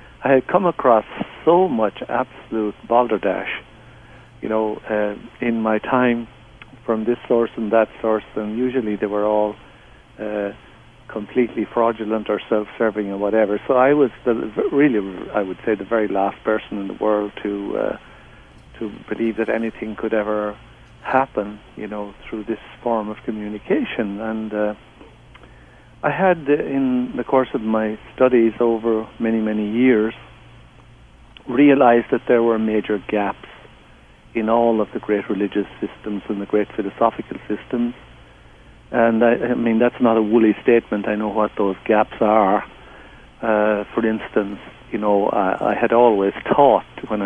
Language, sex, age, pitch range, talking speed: English, male, 60-79, 105-120 Hz, 155 wpm